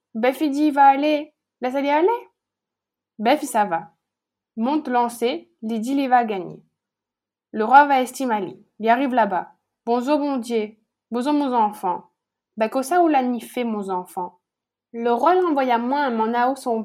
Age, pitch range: 20-39, 220-285 Hz